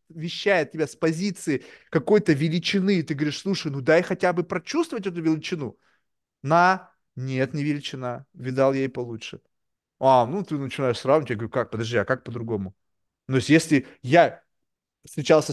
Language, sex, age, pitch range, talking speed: Russian, male, 30-49, 135-185 Hz, 155 wpm